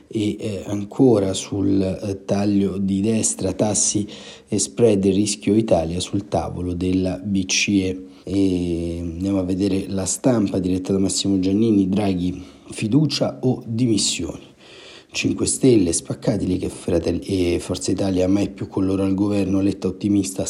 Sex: male